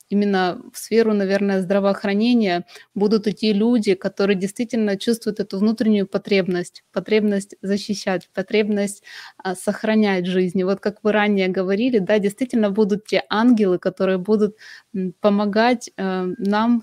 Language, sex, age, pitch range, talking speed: Russian, female, 20-39, 195-220 Hz, 120 wpm